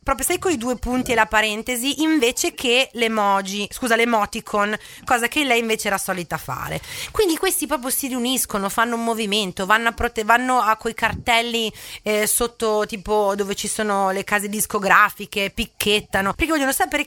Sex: female